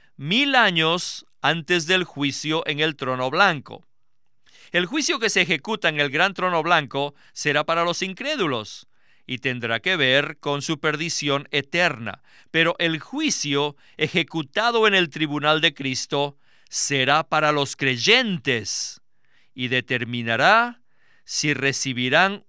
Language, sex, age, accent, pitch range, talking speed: Spanish, male, 50-69, Mexican, 140-195 Hz, 130 wpm